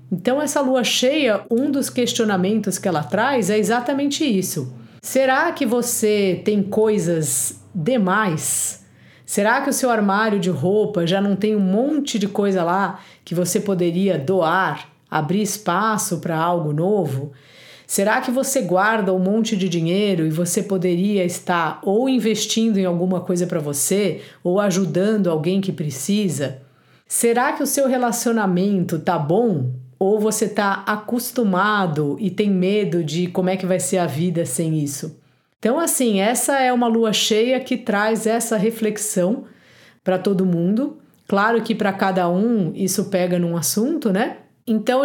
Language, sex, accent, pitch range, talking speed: Portuguese, female, Brazilian, 180-230 Hz, 155 wpm